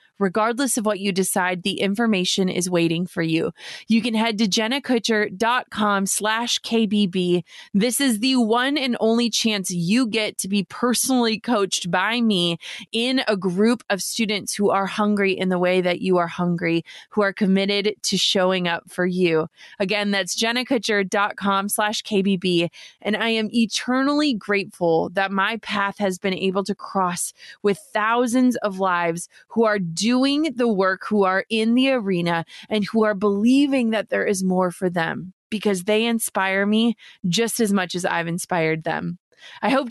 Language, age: English, 20-39